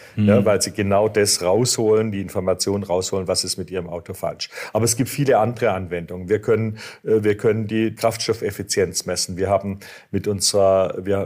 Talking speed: 175 wpm